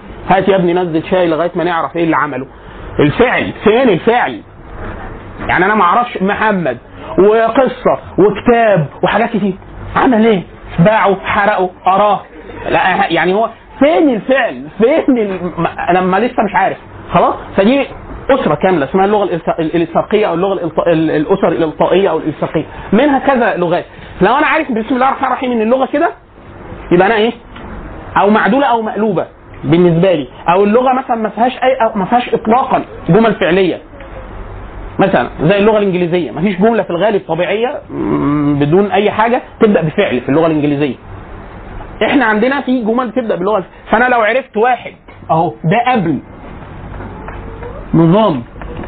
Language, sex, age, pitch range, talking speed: Arabic, male, 30-49, 155-225 Hz, 145 wpm